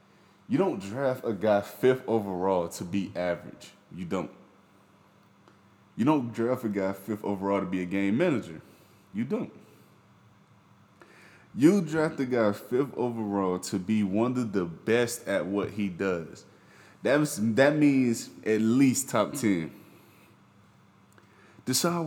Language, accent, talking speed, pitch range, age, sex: English, American, 135 wpm, 95-120 Hz, 20-39, male